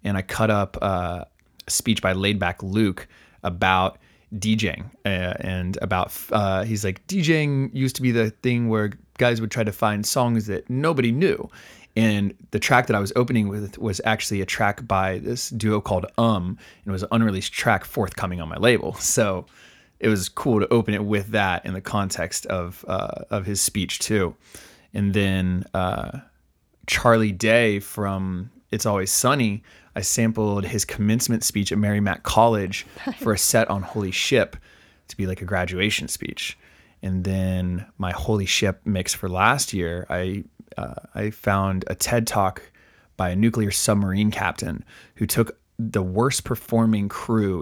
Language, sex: English, male